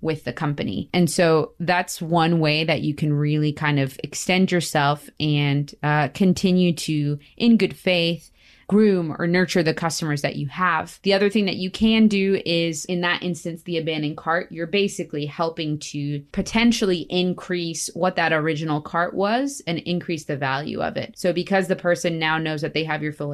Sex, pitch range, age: female, 150-185 Hz, 20-39